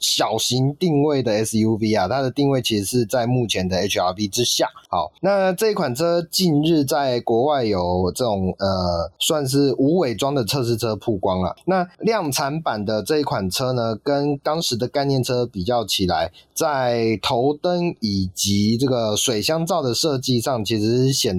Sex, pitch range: male, 105-145 Hz